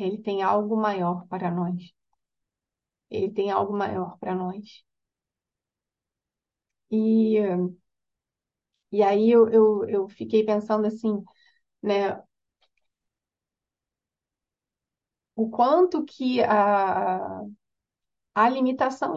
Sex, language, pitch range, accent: female, Portuguese, 210-255 Hz, Brazilian